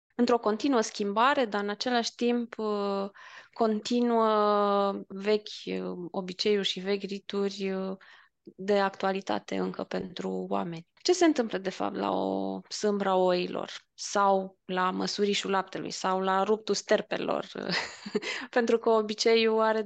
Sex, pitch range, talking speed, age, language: female, 195-230 Hz, 120 wpm, 20-39, Romanian